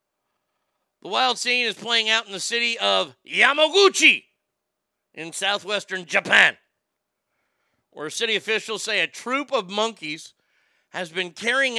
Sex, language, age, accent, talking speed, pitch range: male, English, 50-69, American, 125 wpm, 200-245 Hz